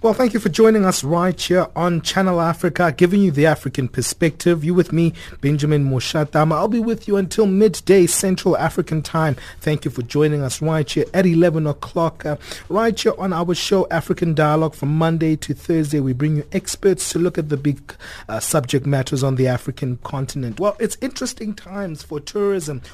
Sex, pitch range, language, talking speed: male, 150-190 Hz, English, 190 wpm